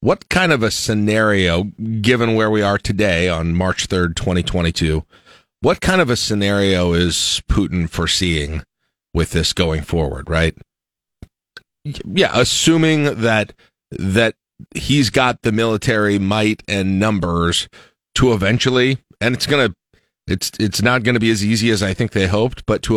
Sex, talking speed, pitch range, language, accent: male, 155 wpm, 100-125 Hz, English, American